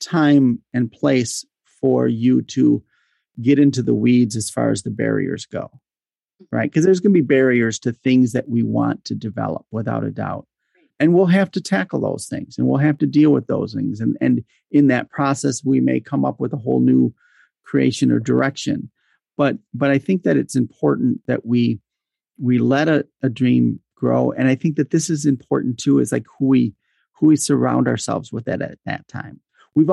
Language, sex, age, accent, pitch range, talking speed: English, male, 40-59, American, 110-145 Hz, 205 wpm